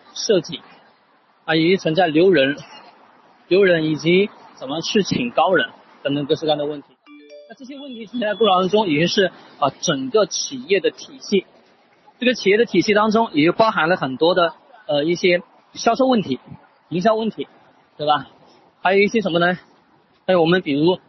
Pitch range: 170-250 Hz